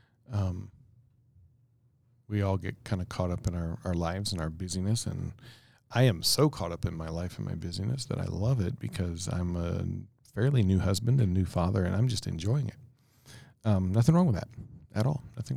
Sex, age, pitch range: male, 40-59, 95-125 Hz